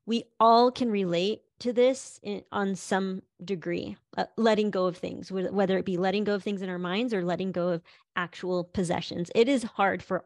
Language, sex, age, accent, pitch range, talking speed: English, female, 30-49, American, 185-225 Hz, 200 wpm